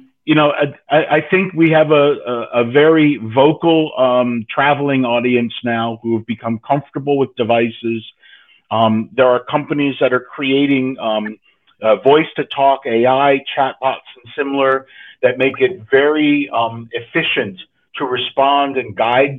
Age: 50-69